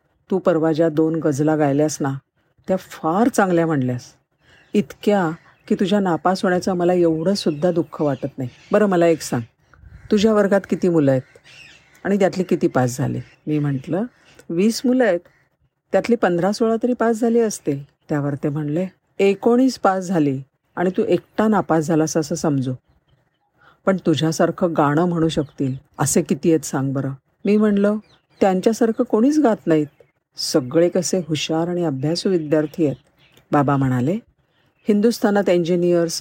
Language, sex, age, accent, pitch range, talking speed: Marathi, female, 50-69, native, 150-195 Hz, 90 wpm